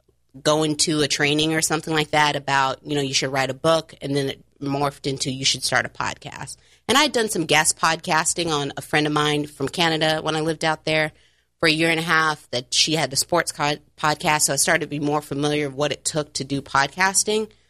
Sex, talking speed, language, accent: female, 240 wpm, English, American